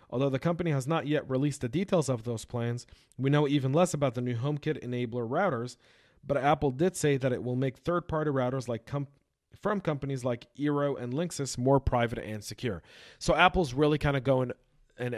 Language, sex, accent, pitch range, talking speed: English, male, American, 115-140 Hz, 200 wpm